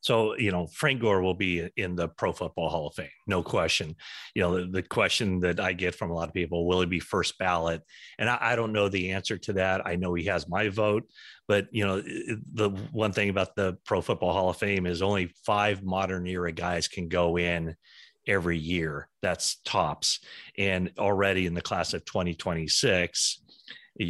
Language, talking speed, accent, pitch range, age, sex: English, 205 wpm, American, 85-100 Hz, 30-49, male